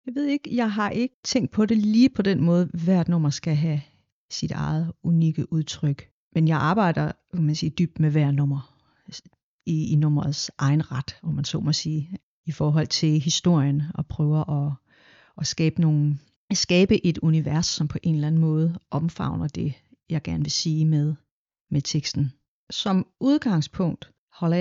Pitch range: 145-170 Hz